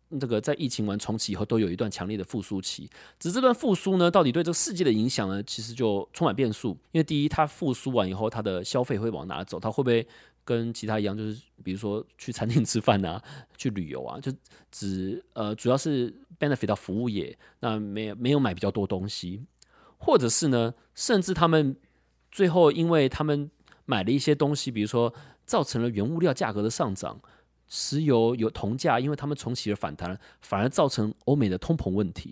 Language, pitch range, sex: Chinese, 100-140 Hz, male